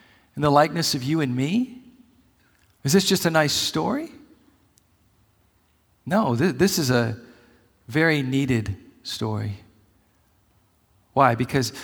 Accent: American